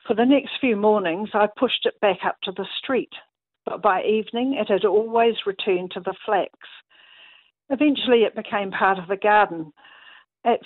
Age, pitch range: 50-69, 195-235 Hz